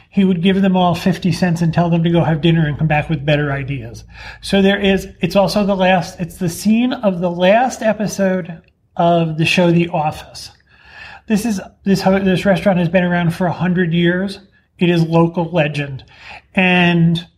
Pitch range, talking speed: 165-190 Hz, 195 wpm